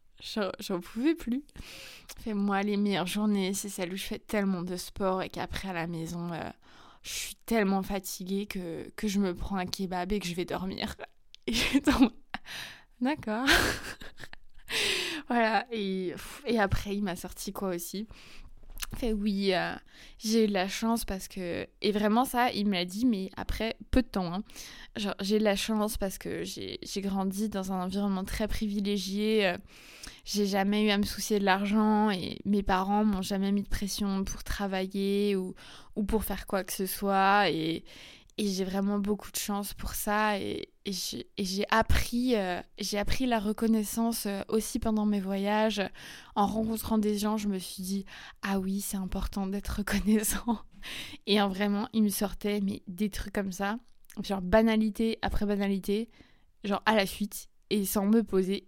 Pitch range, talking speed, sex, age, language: 195-215 Hz, 175 wpm, female, 20-39, French